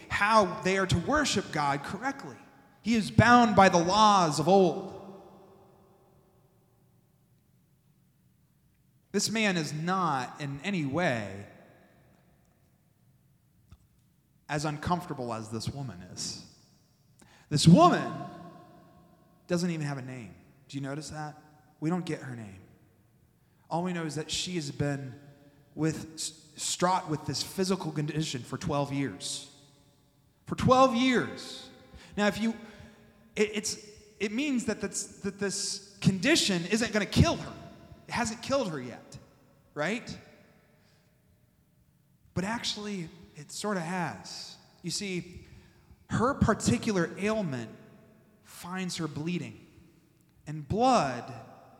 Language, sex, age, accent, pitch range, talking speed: English, male, 30-49, American, 145-195 Hz, 120 wpm